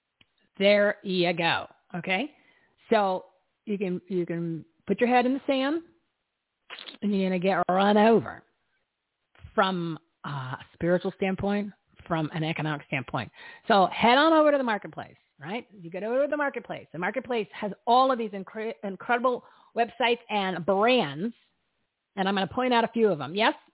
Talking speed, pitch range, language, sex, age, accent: 165 wpm, 180-225 Hz, English, female, 40-59, American